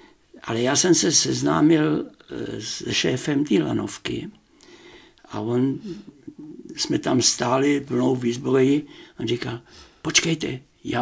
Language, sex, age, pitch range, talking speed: Czech, male, 60-79, 130-200 Hz, 110 wpm